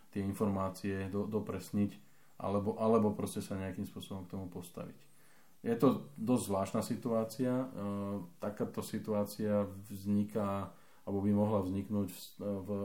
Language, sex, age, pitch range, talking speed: Slovak, male, 20-39, 95-105 Hz, 130 wpm